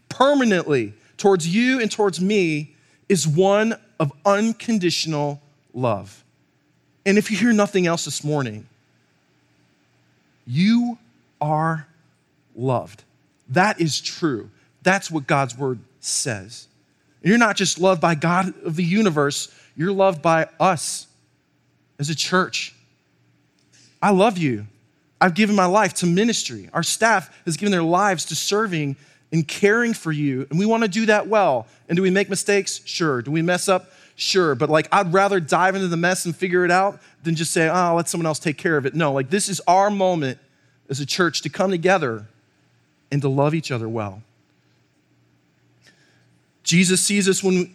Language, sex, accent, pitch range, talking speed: English, male, American, 135-190 Hz, 165 wpm